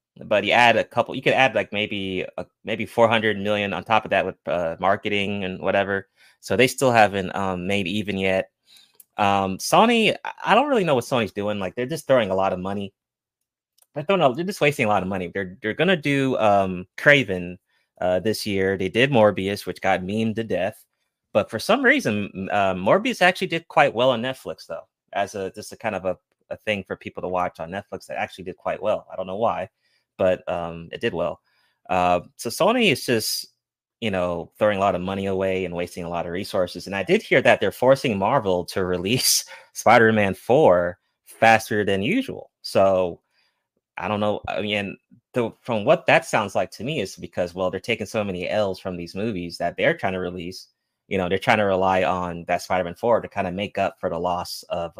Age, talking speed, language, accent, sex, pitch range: 30-49, 220 wpm, English, American, male, 90-110 Hz